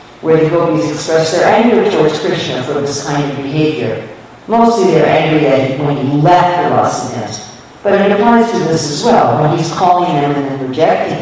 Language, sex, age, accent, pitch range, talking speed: English, female, 50-69, American, 145-210 Hz, 200 wpm